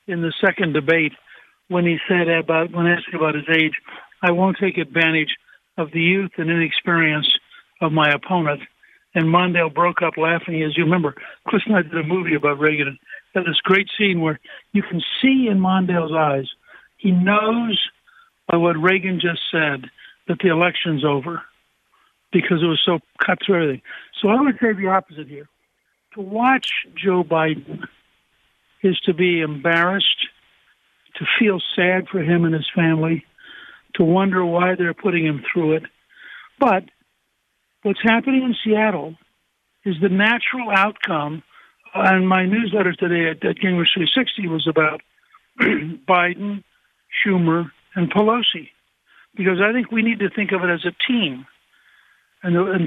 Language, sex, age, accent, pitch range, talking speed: English, male, 60-79, American, 165-200 Hz, 155 wpm